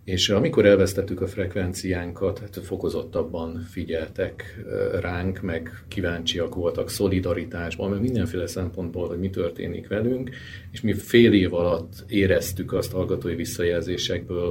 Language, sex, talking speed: Hungarian, male, 120 wpm